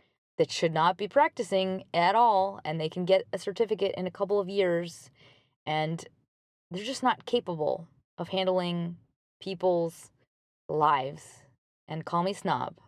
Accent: American